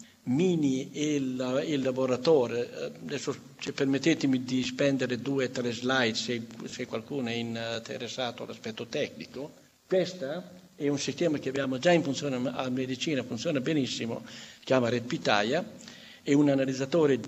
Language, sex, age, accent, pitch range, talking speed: Italian, male, 60-79, native, 125-155 Hz, 130 wpm